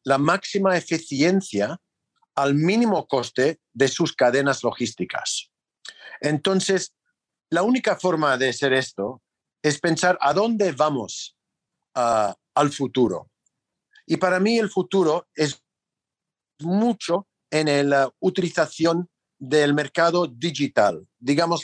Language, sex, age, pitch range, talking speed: Spanish, male, 50-69, 145-190 Hz, 110 wpm